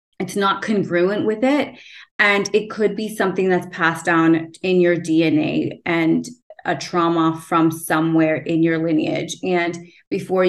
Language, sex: English, female